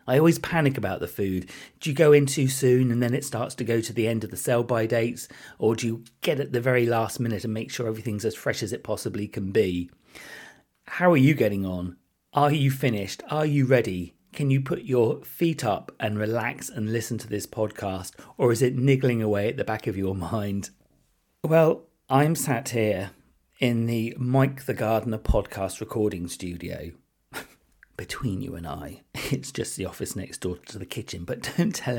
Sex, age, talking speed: male, 40-59, 205 wpm